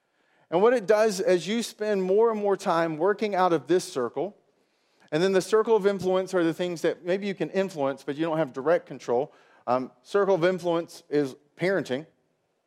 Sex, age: male, 40-59